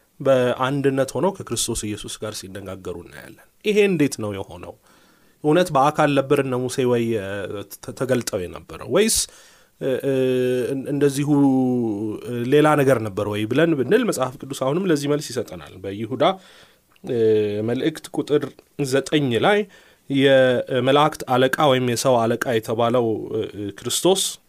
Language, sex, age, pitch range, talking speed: Amharic, male, 30-49, 115-150 Hz, 110 wpm